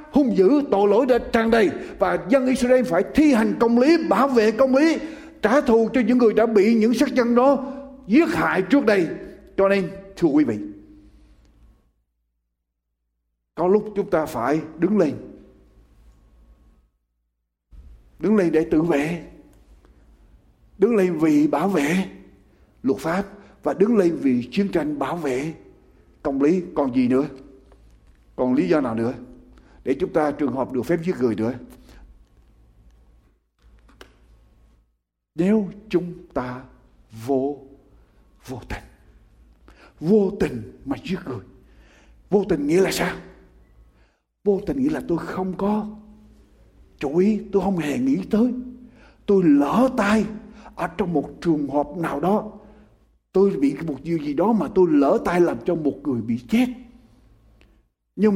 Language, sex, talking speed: Ukrainian, male, 145 wpm